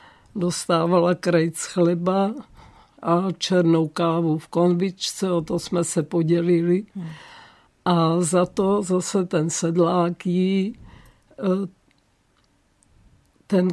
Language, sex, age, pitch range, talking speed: Czech, female, 50-69, 170-185 Hz, 85 wpm